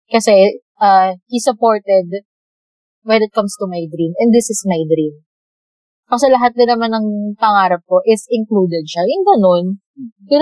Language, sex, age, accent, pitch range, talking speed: Filipino, female, 20-39, native, 180-230 Hz, 165 wpm